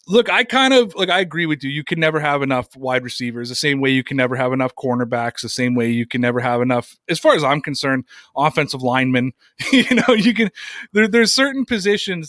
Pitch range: 135-175 Hz